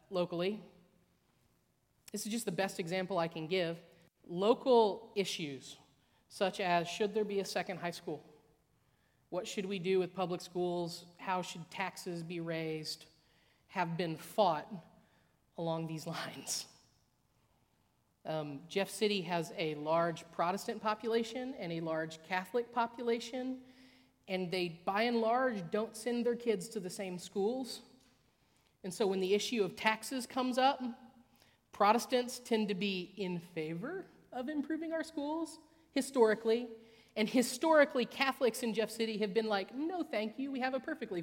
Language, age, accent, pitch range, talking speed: English, 40-59, American, 175-235 Hz, 145 wpm